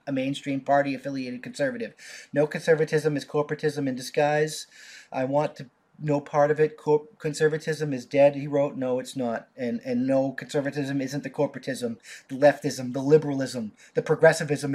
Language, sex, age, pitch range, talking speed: English, male, 30-49, 150-225 Hz, 160 wpm